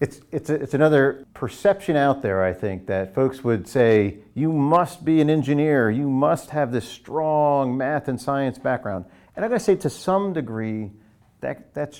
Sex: male